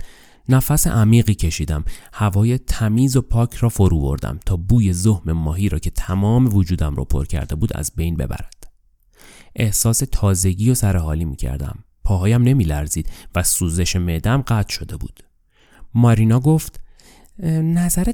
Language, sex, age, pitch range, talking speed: Persian, male, 30-49, 90-140 Hz, 140 wpm